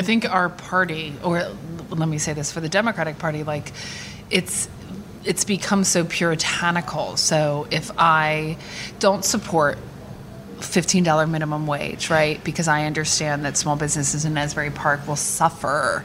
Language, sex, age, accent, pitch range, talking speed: English, female, 30-49, American, 155-185 Hz, 150 wpm